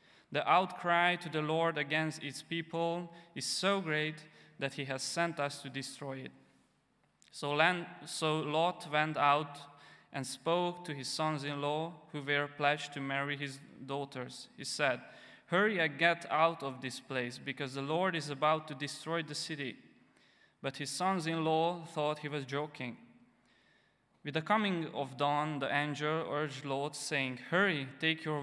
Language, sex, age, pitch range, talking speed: English, male, 20-39, 140-165 Hz, 155 wpm